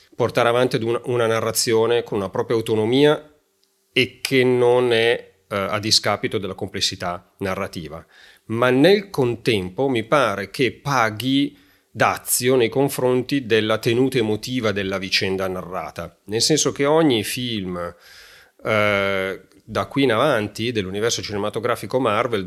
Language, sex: Italian, male